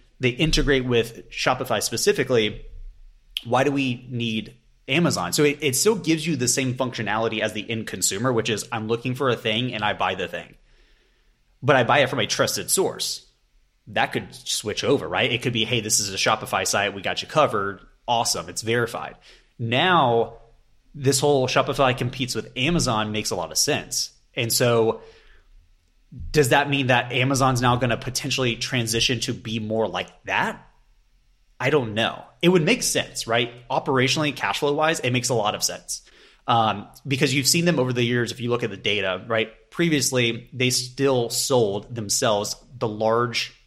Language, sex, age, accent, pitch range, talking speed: English, male, 30-49, American, 115-135 Hz, 180 wpm